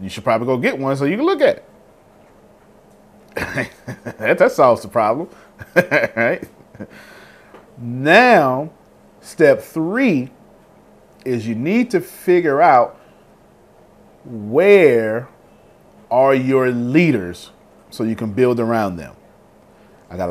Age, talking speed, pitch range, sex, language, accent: 30-49, 110 wpm, 105-135 Hz, male, English, American